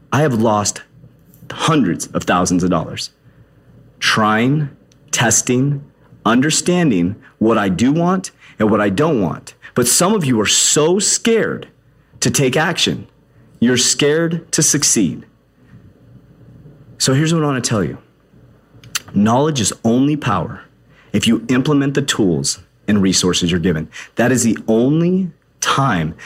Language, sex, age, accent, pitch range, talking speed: English, male, 30-49, American, 120-180 Hz, 135 wpm